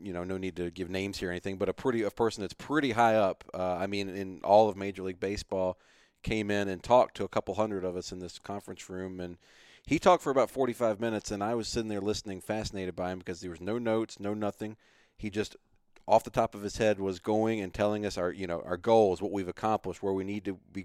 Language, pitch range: English, 90-105 Hz